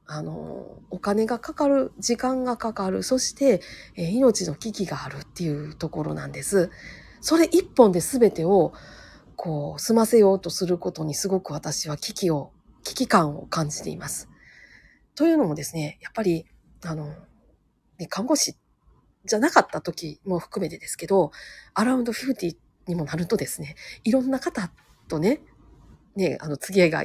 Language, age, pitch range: Japanese, 40-59, 170-260 Hz